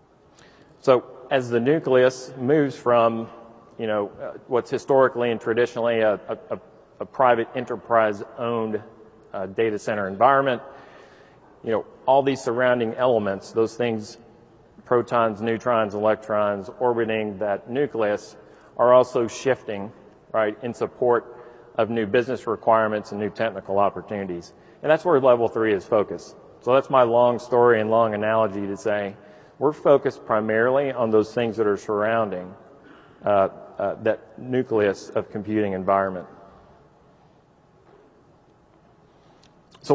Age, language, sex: 40-59, English, male